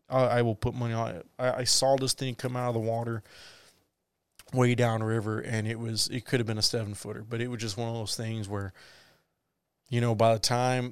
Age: 20-39